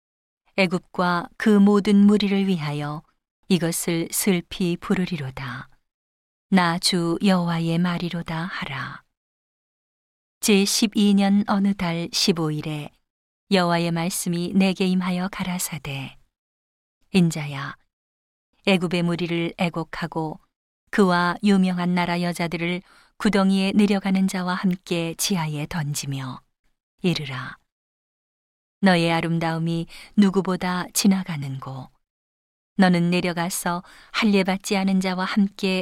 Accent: native